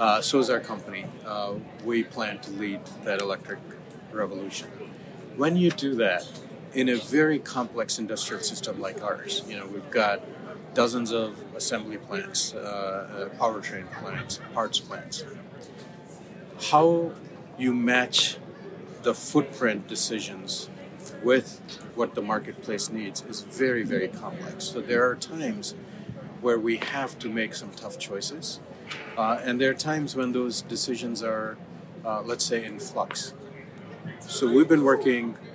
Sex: male